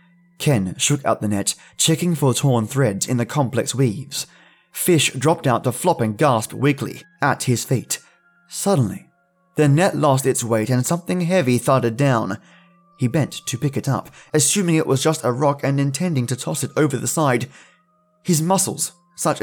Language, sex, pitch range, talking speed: English, male, 120-160 Hz, 180 wpm